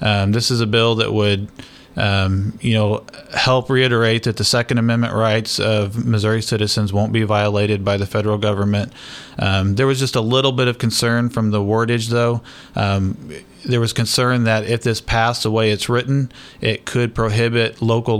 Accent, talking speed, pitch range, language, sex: American, 185 wpm, 105-115 Hz, English, male